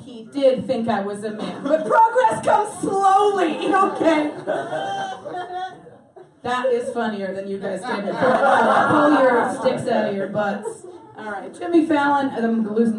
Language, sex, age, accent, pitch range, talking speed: English, female, 30-49, American, 225-315 Hz, 150 wpm